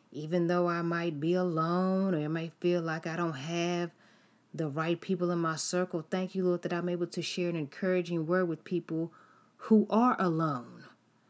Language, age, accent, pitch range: English, 30-49, American, 145-175 Hz